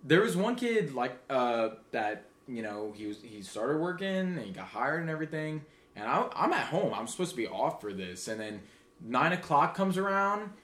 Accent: American